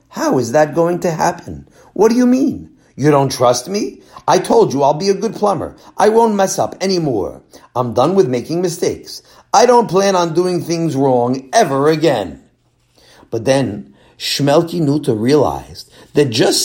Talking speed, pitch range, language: 175 wpm, 135-190 Hz, English